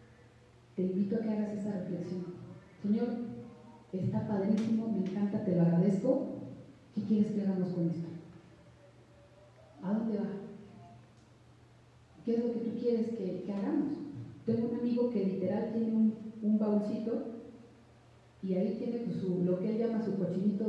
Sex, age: female, 40-59